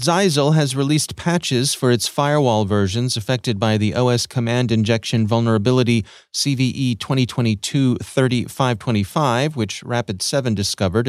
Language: English